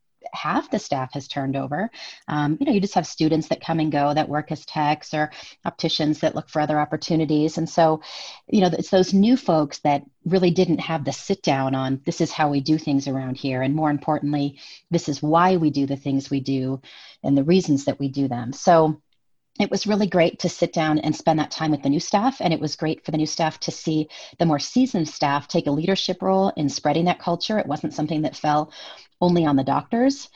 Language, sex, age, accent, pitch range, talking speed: English, female, 30-49, American, 150-175 Hz, 235 wpm